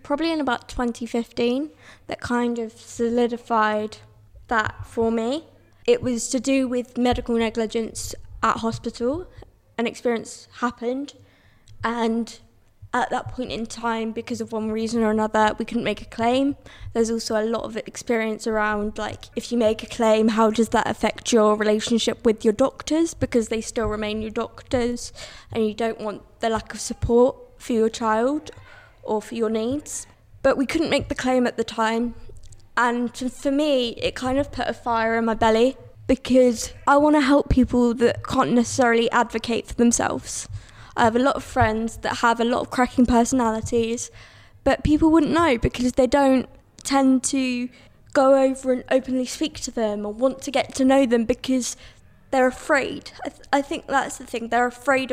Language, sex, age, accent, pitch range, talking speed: English, female, 20-39, British, 225-255 Hz, 175 wpm